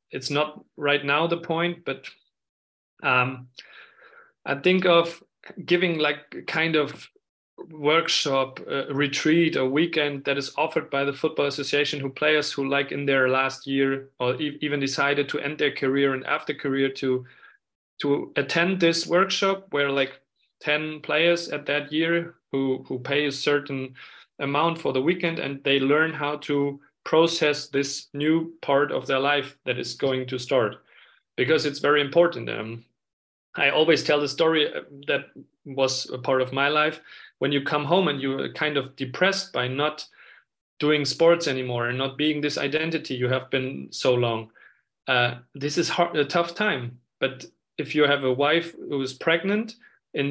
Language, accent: English, German